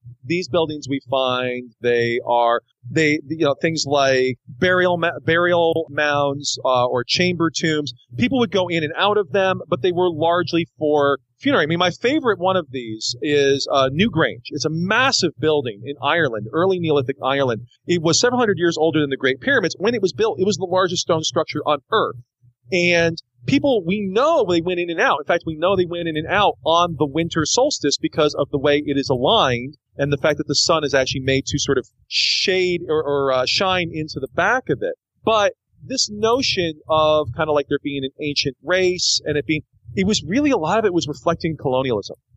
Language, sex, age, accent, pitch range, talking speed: English, male, 40-59, American, 140-185 Hz, 210 wpm